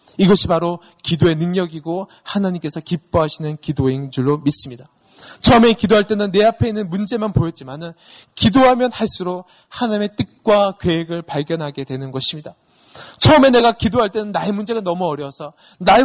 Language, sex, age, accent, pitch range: Korean, male, 20-39, native, 160-220 Hz